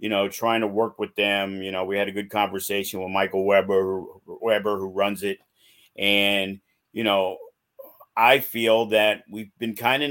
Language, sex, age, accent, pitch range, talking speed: English, male, 50-69, American, 105-140 Hz, 185 wpm